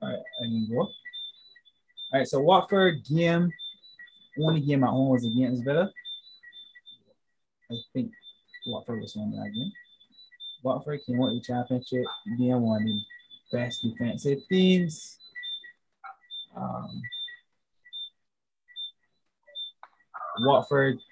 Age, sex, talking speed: 20-39, male, 115 wpm